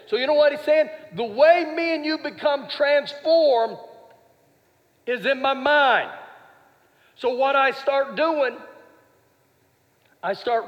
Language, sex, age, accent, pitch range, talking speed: English, male, 50-69, American, 210-290 Hz, 135 wpm